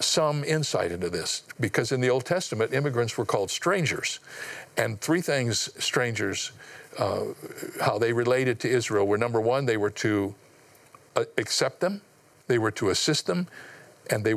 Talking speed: 165 wpm